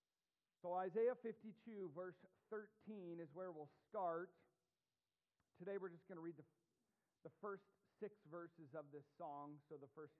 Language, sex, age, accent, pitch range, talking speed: English, male, 40-59, American, 150-190 Hz, 145 wpm